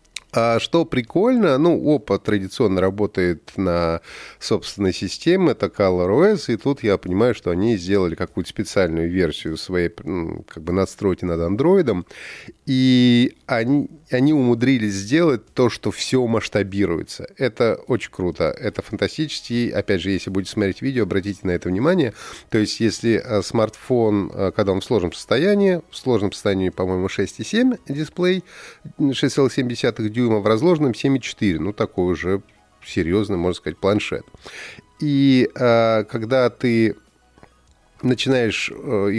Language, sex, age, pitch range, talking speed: Russian, male, 30-49, 95-130 Hz, 130 wpm